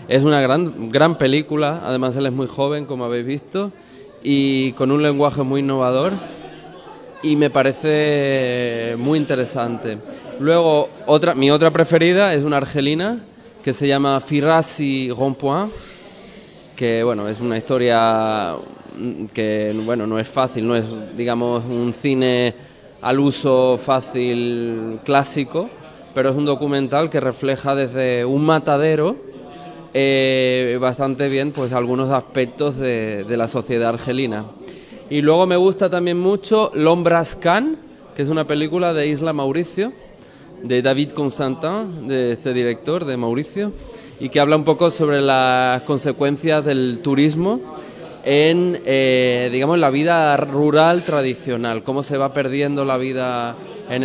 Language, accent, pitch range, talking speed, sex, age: Spanish, Spanish, 125-155 Hz, 135 wpm, male, 20-39